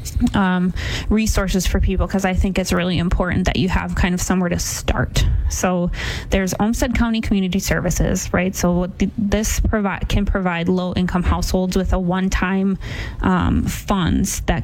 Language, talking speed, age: English, 160 wpm, 20-39